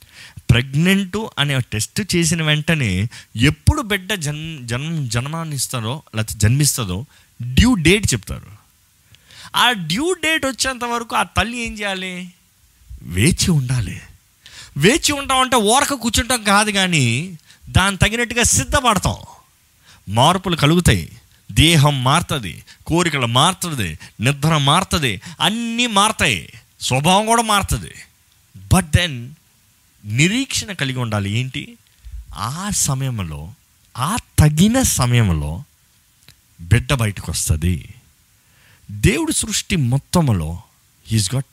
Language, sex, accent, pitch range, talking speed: Telugu, male, native, 105-170 Hz, 95 wpm